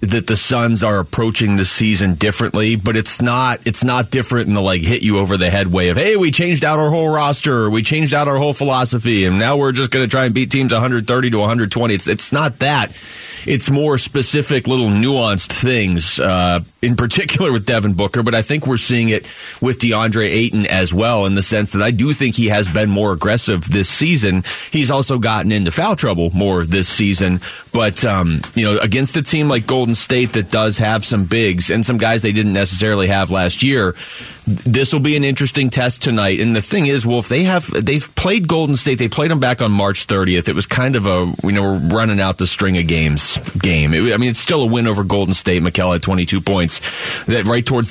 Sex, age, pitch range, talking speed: male, 30-49, 100-130 Hz, 225 wpm